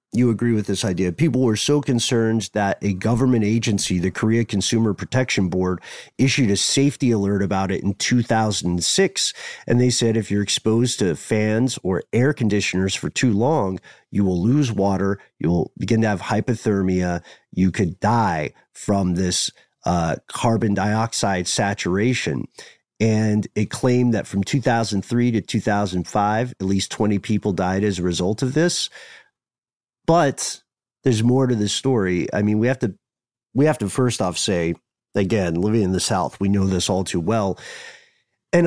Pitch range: 100-130 Hz